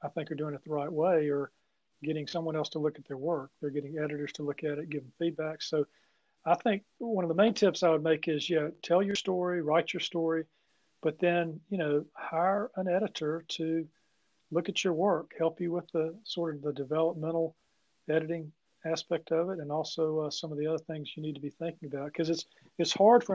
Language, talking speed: English, 235 wpm